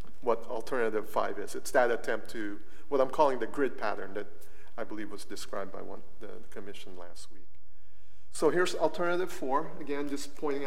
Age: 40-59